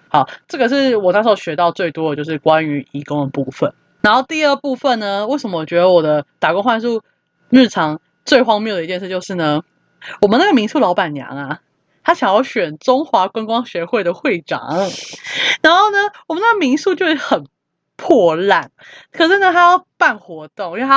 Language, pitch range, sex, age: Chinese, 170-260 Hz, female, 20-39